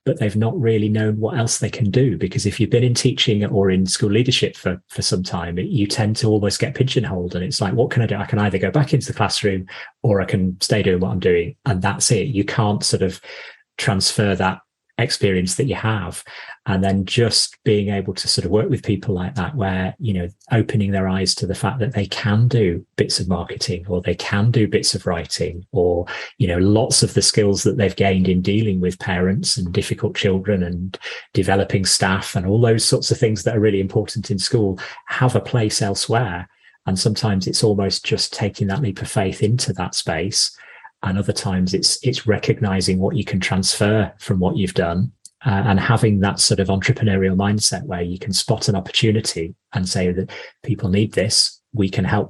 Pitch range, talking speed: 95-115 Hz, 215 wpm